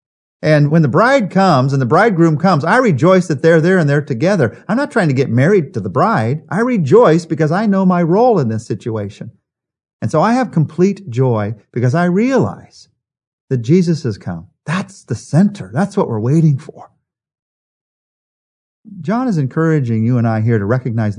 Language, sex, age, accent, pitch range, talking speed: English, male, 50-69, American, 110-175 Hz, 185 wpm